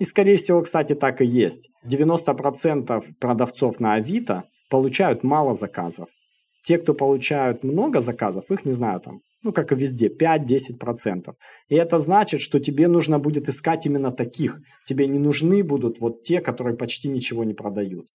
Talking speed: 160 wpm